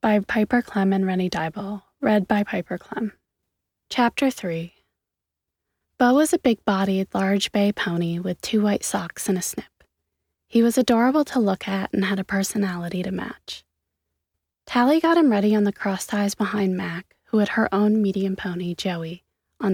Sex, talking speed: female, 170 wpm